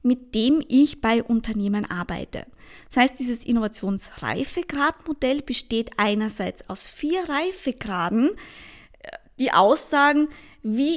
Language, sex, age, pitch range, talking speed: English, female, 20-39, 220-280 Hz, 100 wpm